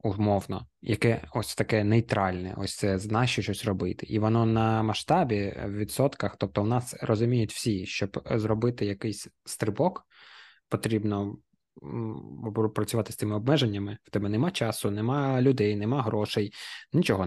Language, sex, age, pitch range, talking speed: Ukrainian, male, 20-39, 100-115 Hz, 140 wpm